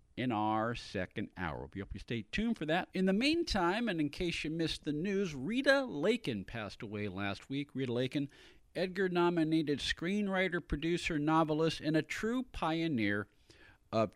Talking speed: 160 wpm